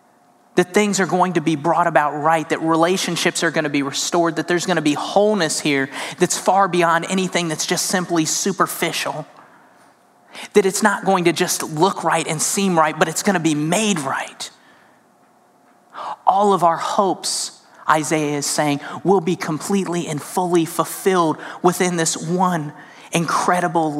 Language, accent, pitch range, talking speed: English, American, 155-180 Hz, 165 wpm